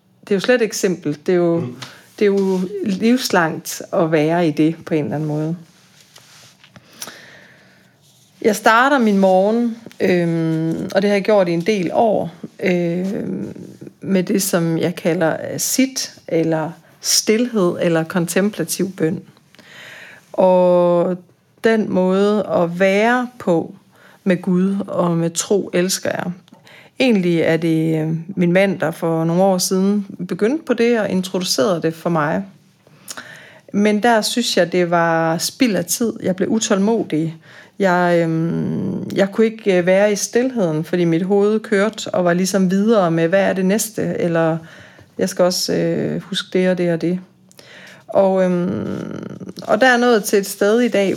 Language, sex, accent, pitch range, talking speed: Danish, female, native, 170-205 Hz, 160 wpm